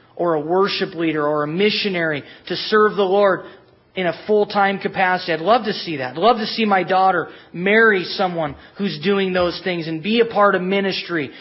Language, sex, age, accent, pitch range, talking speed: English, male, 20-39, American, 165-205 Hz, 200 wpm